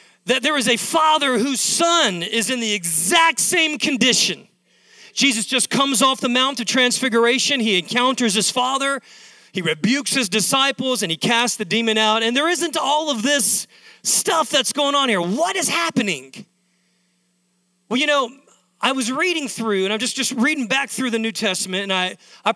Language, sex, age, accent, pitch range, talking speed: English, male, 40-59, American, 195-270 Hz, 185 wpm